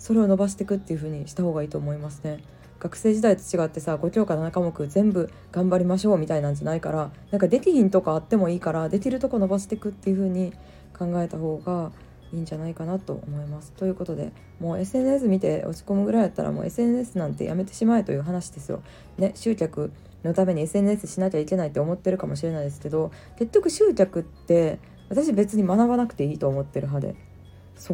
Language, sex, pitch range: Japanese, female, 155-205 Hz